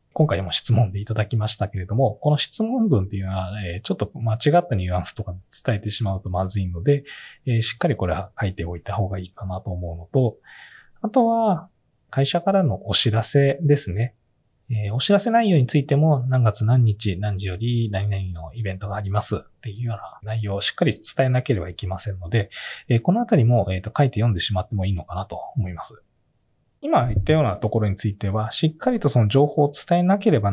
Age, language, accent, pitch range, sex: 20-39, Japanese, native, 100-140 Hz, male